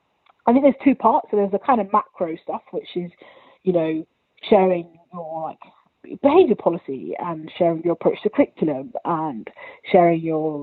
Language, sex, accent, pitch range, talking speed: English, female, British, 165-210 Hz, 175 wpm